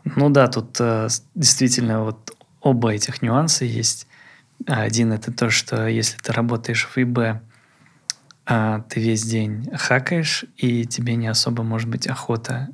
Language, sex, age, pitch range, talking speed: Russian, male, 20-39, 115-130 Hz, 135 wpm